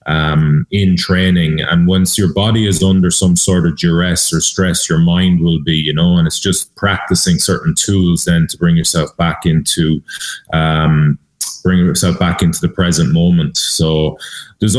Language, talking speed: English, 175 wpm